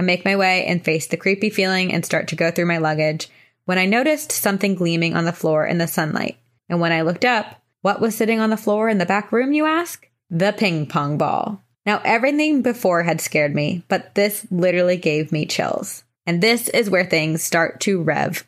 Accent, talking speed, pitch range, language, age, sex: American, 220 wpm, 160-195 Hz, English, 20-39, female